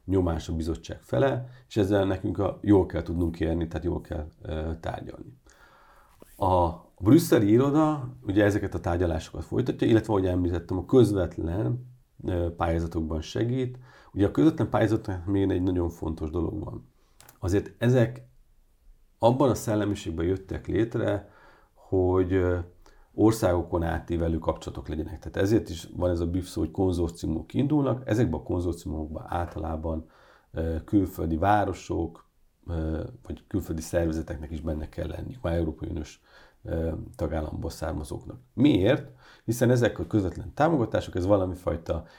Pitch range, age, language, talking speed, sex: 80-105 Hz, 50-69, Hungarian, 130 wpm, male